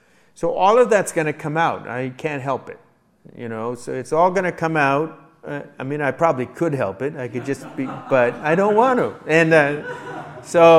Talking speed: 230 wpm